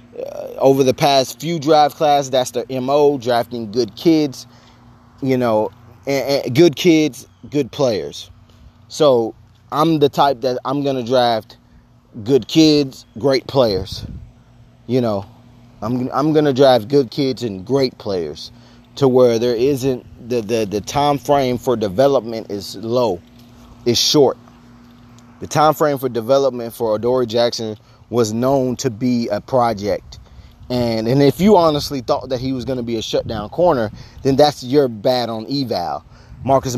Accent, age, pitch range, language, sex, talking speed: American, 30-49, 115-140 Hz, English, male, 160 wpm